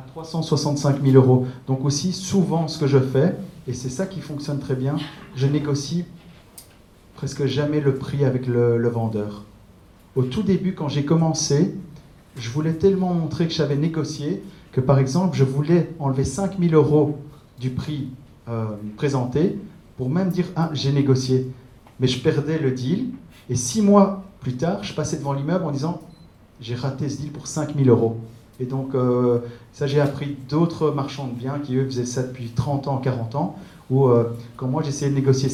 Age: 40-59